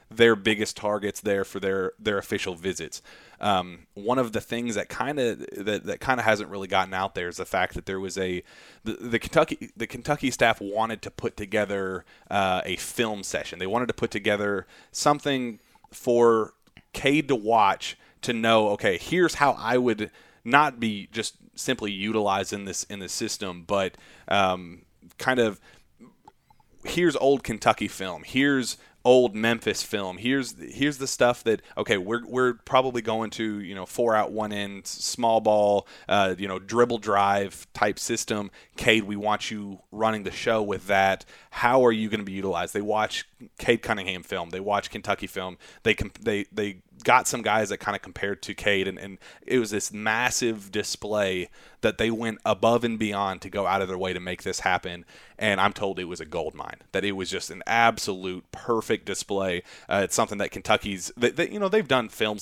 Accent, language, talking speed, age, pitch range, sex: American, English, 190 wpm, 30-49, 95-115 Hz, male